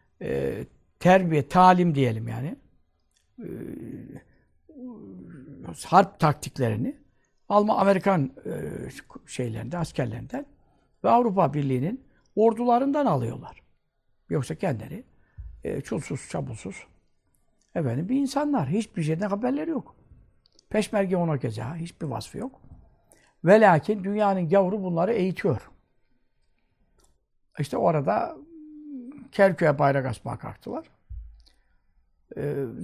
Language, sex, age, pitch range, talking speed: Turkish, male, 60-79, 140-205 Hz, 90 wpm